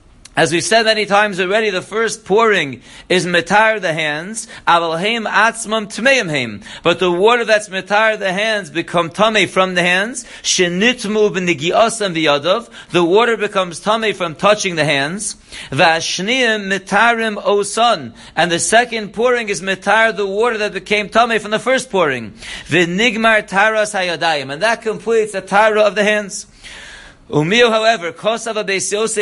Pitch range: 180-215 Hz